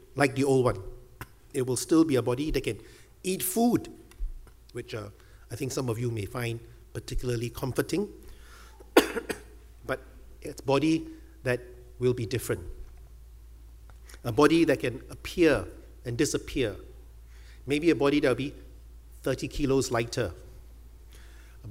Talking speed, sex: 140 wpm, male